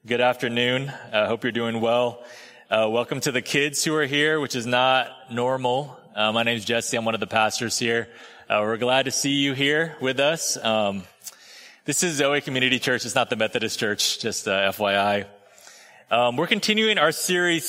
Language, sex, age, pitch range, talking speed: English, male, 30-49, 120-150 Hz, 200 wpm